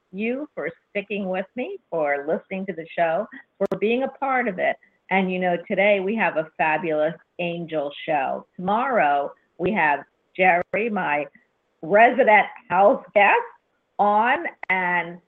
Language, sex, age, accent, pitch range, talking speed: English, female, 50-69, American, 170-215 Hz, 140 wpm